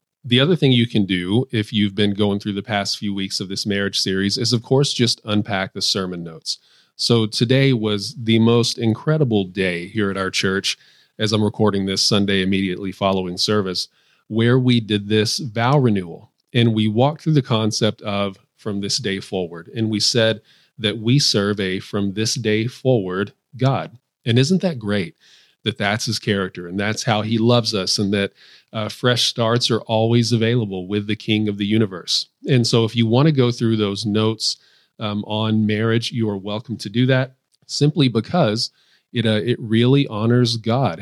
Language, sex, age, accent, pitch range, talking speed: English, male, 40-59, American, 105-120 Hz, 190 wpm